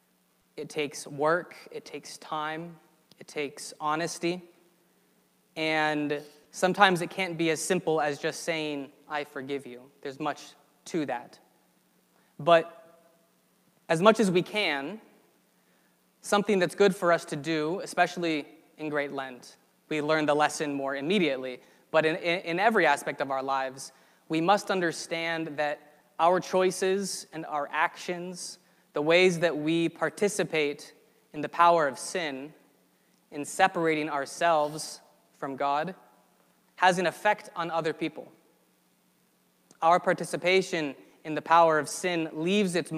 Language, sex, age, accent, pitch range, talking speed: English, male, 20-39, American, 150-175 Hz, 135 wpm